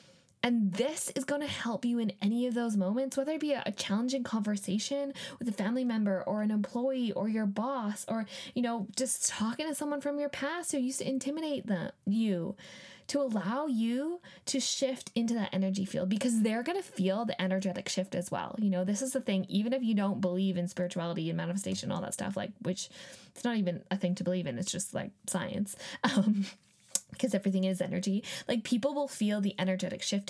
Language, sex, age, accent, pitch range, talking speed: English, female, 10-29, American, 185-230 Hz, 210 wpm